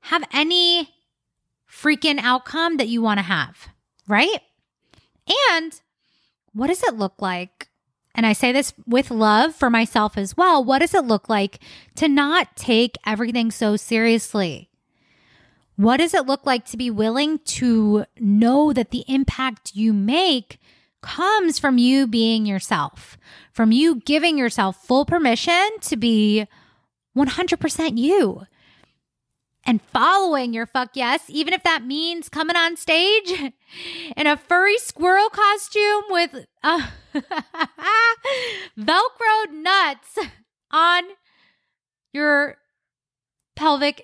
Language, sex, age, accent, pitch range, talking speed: English, female, 20-39, American, 230-335 Hz, 125 wpm